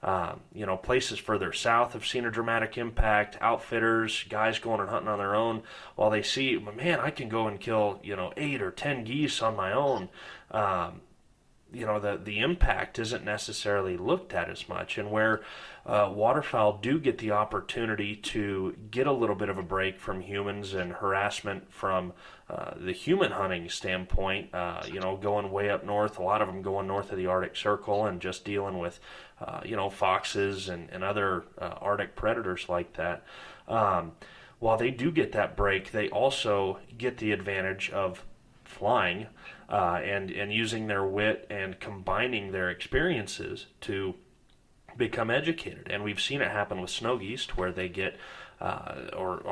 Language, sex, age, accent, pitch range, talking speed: English, male, 30-49, American, 95-110 Hz, 180 wpm